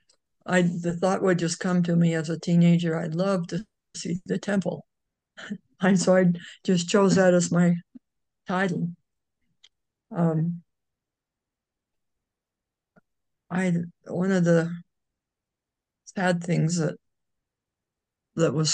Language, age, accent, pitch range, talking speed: English, 60-79, American, 165-185 Hz, 115 wpm